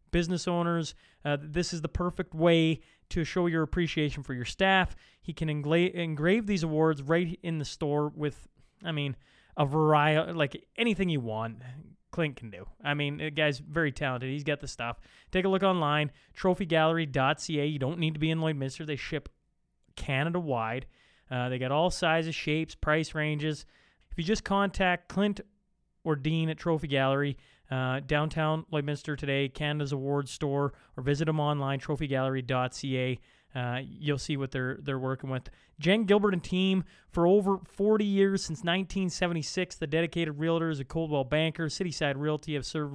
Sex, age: male, 20-39